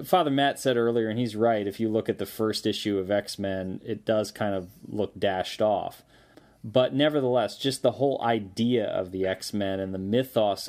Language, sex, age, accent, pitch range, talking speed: English, male, 30-49, American, 100-120 Hz, 195 wpm